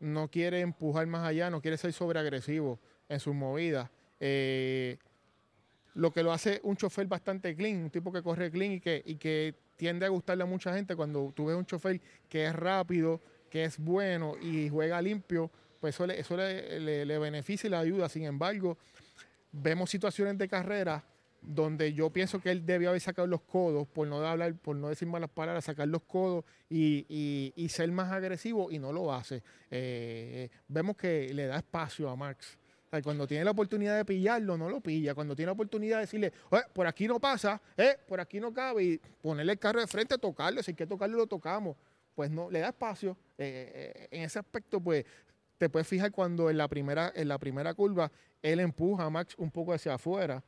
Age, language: 20-39, Spanish